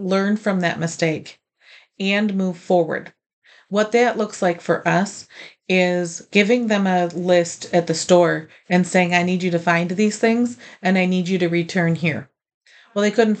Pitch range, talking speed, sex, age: 170-210 Hz, 180 wpm, female, 40-59